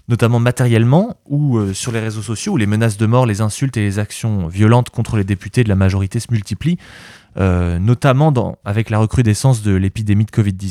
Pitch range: 100-120 Hz